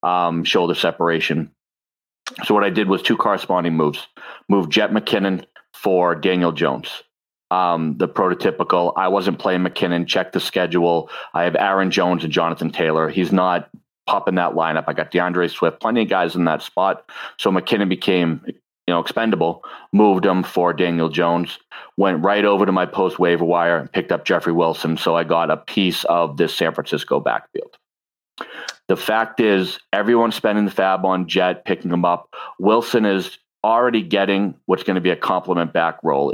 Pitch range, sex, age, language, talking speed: 85-95 Hz, male, 40-59, English, 175 wpm